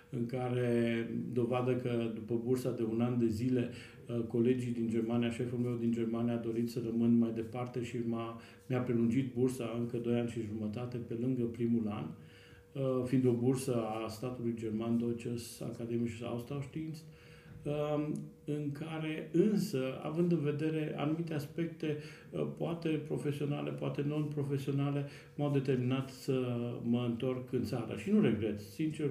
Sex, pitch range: male, 120-140 Hz